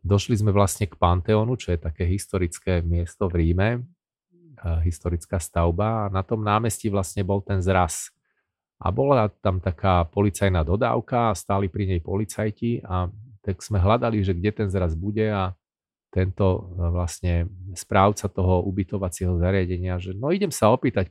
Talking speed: 155 wpm